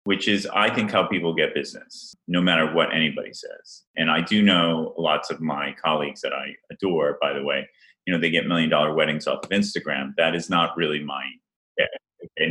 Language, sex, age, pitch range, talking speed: English, male, 30-49, 75-95 Hz, 200 wpm